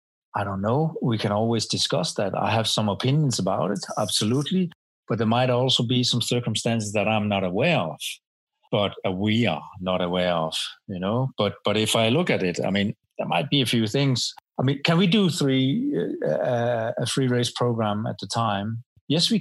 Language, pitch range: English, 100-125 Hz